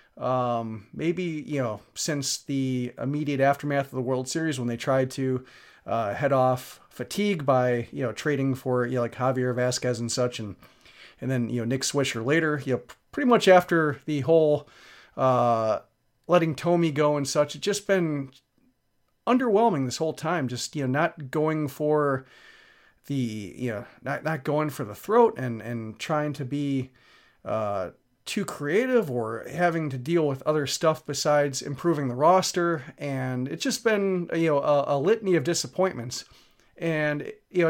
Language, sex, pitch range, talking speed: English, male, 130-170 Hz, 170 wpm